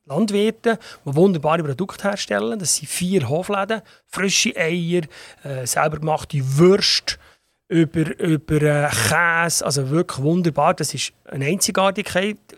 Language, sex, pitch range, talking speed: German, male, 150-195 Hz, 125 wpm